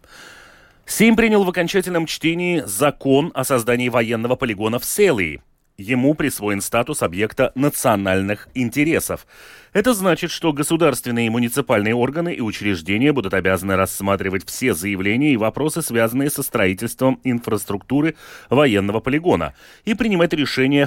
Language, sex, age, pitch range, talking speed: Russian, male, 30-49, 110-165 Hz, 125 wpm